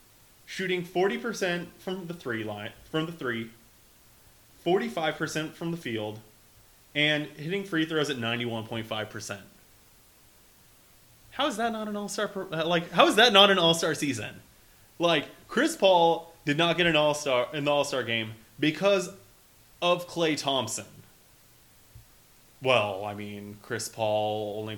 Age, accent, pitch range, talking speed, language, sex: 20-39, American, 110-160 Hz, 135 wpm, English, male